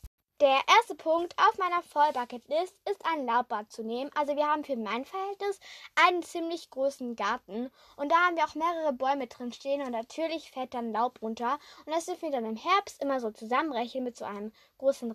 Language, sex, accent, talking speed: German, female, German, 200 wpm